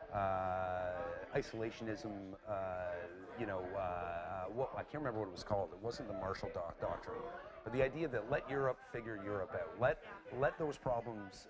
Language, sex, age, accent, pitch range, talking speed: English, male, 40-59, American, 95-115 Hz, 170 wpm